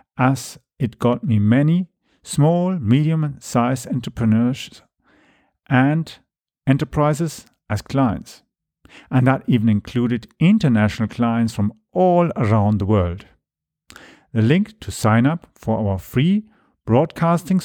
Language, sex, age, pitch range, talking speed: English, male, 50-69, 110-160 Hz, 110 wpm